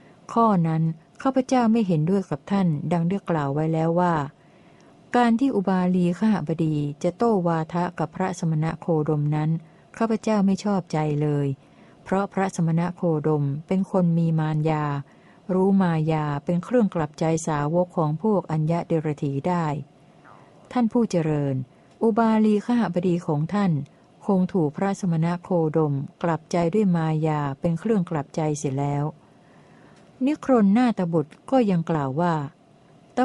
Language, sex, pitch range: Thai, female, 155-195 Hz